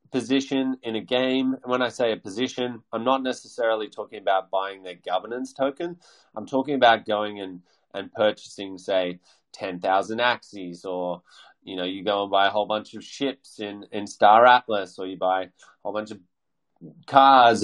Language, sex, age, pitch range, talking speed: English, male, 20-39, 100-125 Hz, 185 wpm